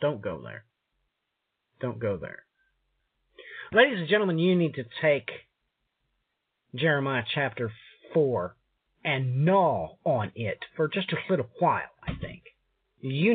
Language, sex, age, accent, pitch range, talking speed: English, male, 50-69, American, 125-180 Hz, 125 wpm